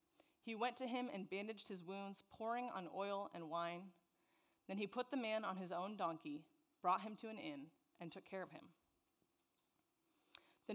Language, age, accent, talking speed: English, 30-49, American, 185 wpm